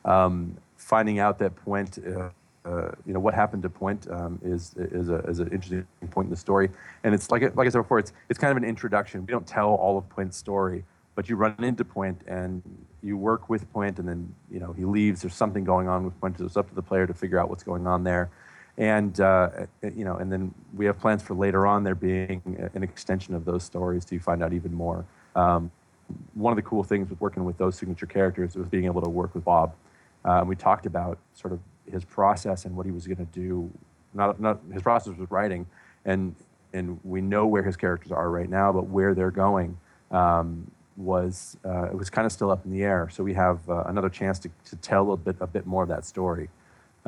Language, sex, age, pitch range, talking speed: English, male, 30-49, 90-100 Hz, 235 wpm